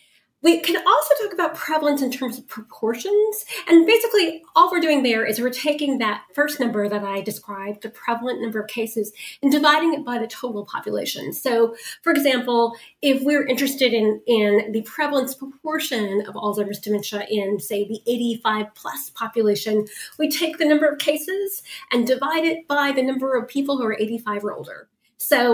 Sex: female